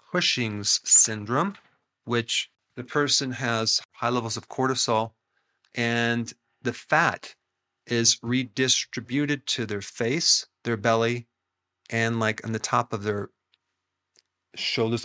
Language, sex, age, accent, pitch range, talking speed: English, male, 40-59, American, 110-125 Hz, 110 wpm